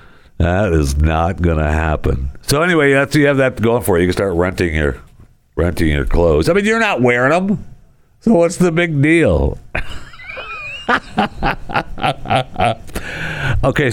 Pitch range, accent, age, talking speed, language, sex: 80-125 Hz, American, 60-79, 145 wpm, English, male